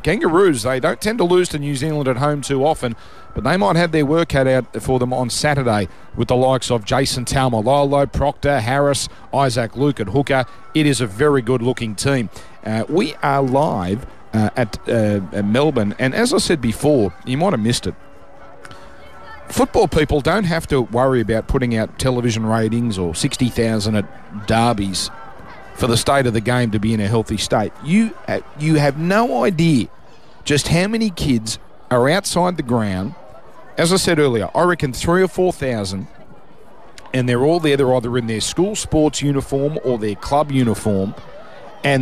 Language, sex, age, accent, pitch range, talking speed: English, male, 40-59, Australian, 115-155 Hz, 185 wpm